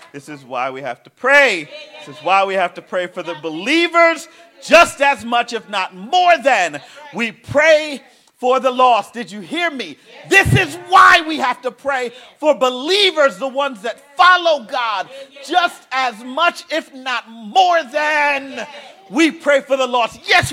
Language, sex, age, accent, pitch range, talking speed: English, male, 40-59, American, 245-320 Hz, 175 wpm